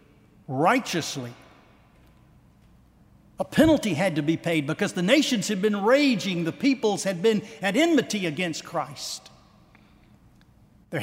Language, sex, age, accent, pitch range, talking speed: English, male, 60-79, American, 145-180 Hz, 120 wpm